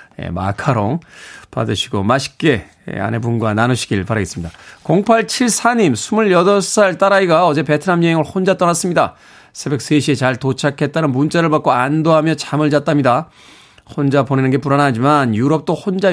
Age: 20-39